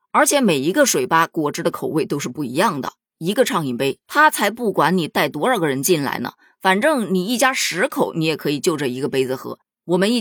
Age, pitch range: 20-39, 155-240 Hz